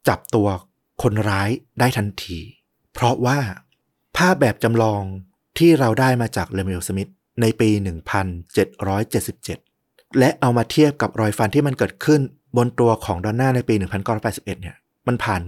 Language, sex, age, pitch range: Thai, male, 30-49, 95-125 Hz